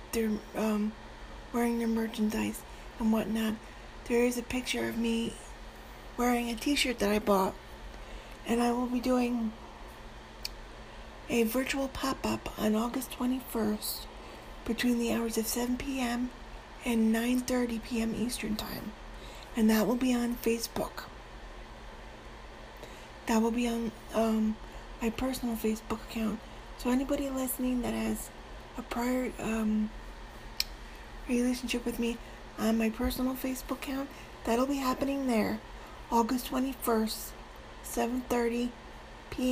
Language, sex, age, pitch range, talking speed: English, female, 40-59, 220-250 Hz, 125 wpm